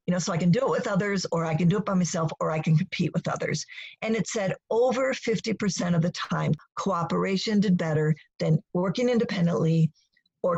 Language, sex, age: English, female, 50-69